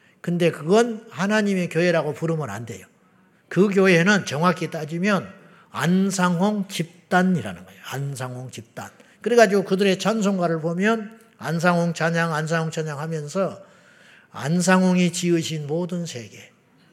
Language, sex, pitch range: Korean, male, 150-195 Hz